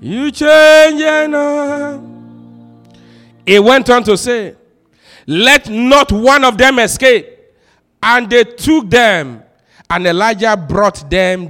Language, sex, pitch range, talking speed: English, male, 175-255 Hz, 115 wpm